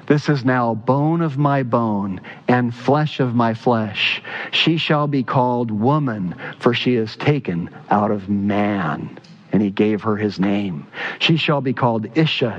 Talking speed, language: 165 wpm, English